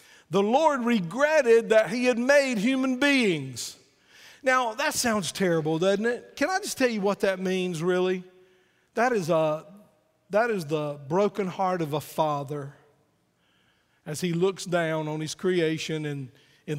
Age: 50-69